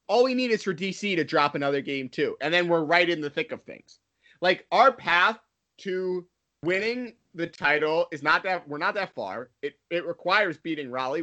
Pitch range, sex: 160-225 Hz, male